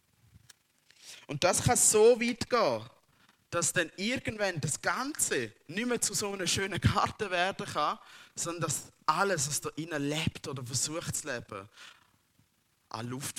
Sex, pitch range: male, 115-170 Hz